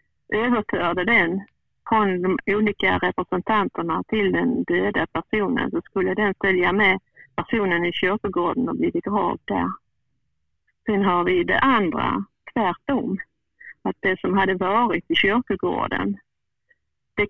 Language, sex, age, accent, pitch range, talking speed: Swedish, female, 50-69, native, 190-220 Hz, 125 wpm